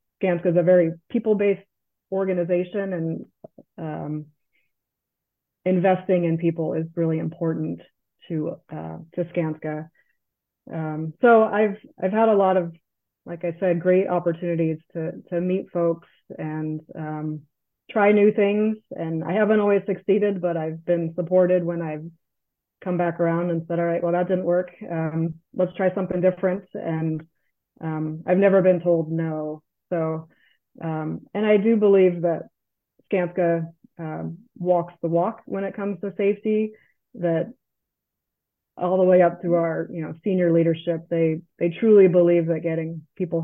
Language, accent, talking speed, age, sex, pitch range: English, American, 150 wpm, 30-49, female, 165-185 Hz